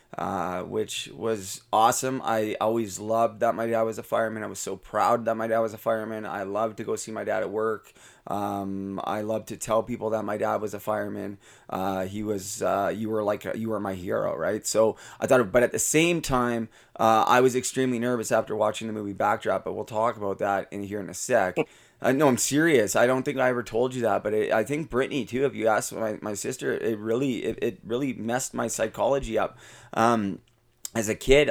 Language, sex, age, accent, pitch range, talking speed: English, male, 20-39, American, 105-120 Hz, 230 wpm